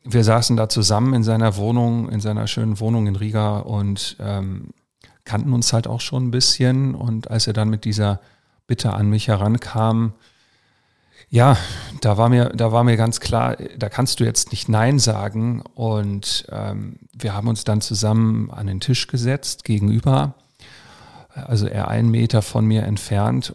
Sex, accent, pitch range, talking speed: male, German, 105-120 Hz, 165 wpm